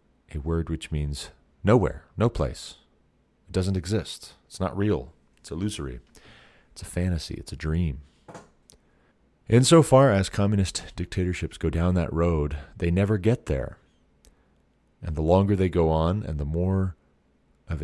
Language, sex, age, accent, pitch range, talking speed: English, male, 40-59, American, 70-90 Hz, 145 wpm